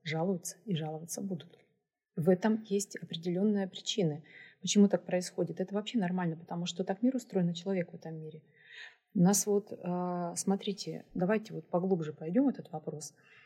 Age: 30-49